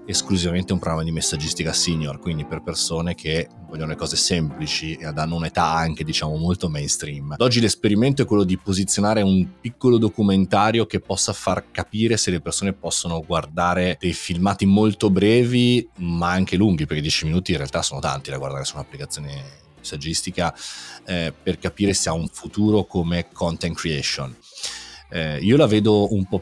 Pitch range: 80-100 Hz